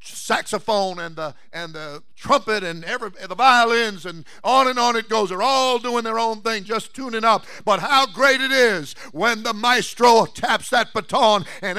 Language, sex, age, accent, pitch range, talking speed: English, male, 50-69, American, 210-280 Hz, 195 wpm